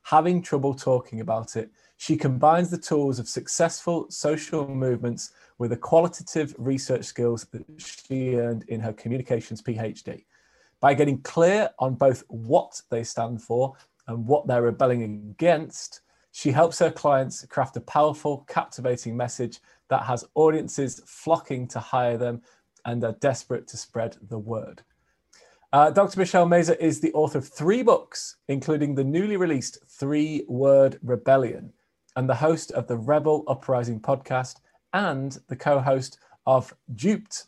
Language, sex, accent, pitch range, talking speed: English, male, British, 125-160 Hz, 145 wpm